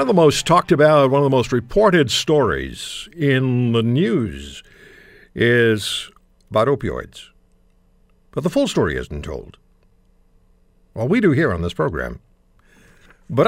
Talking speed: 140 wpm